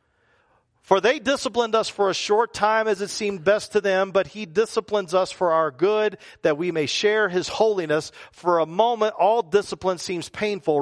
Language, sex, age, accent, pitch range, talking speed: English, male, 40-59, American, 120-175 Hz, 190 wpm